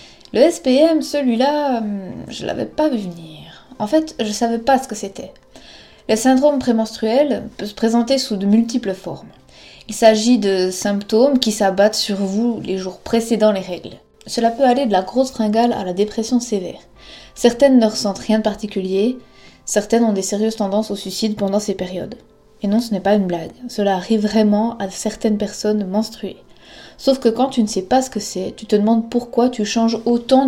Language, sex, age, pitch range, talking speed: French, female, 20-39, 200-245 Hz, 195 wpm